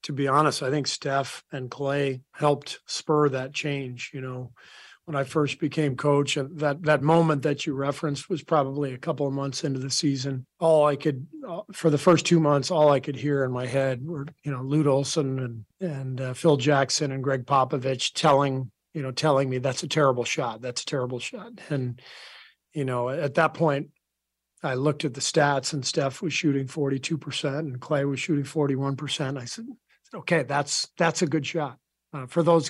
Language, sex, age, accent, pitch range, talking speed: English, male, 40-59, American, 135-155 Hz, 195 wpm